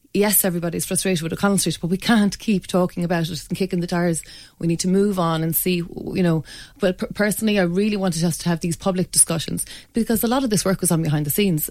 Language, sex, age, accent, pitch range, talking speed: English, female, 30-49, Irish, 165-195 Hz, 245 wpm